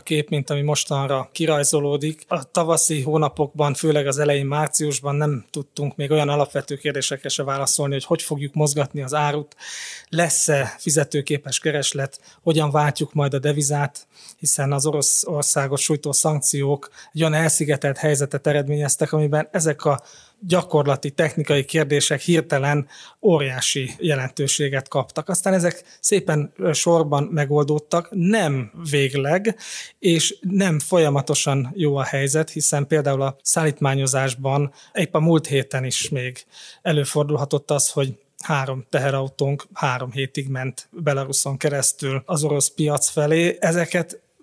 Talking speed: 125 wpm